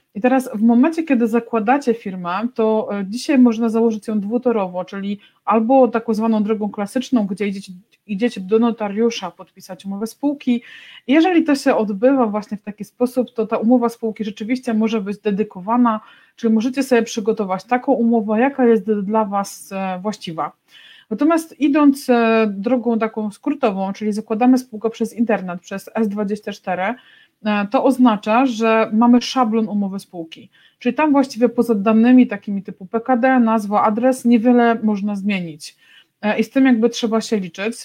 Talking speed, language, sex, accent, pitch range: 145 wpm, Polish, female, native, 205-240 Hz